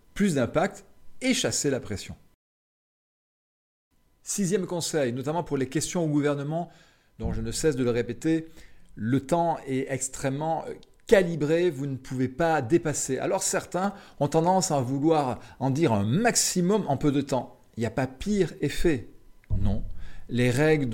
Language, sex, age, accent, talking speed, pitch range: French, male, 40-59, French, 155 wpm, 110-160 Hz